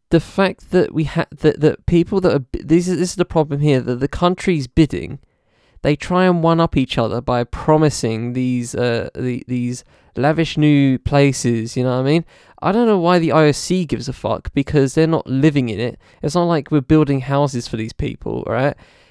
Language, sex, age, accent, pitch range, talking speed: English, male, 20-39, British, 130-170 Hz, 215 wpm